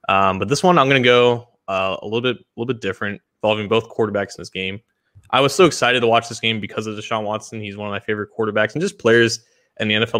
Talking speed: 270 wpm